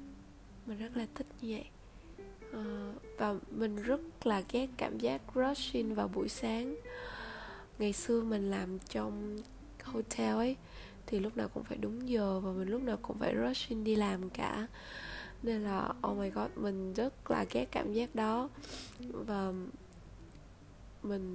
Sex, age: female, 20-39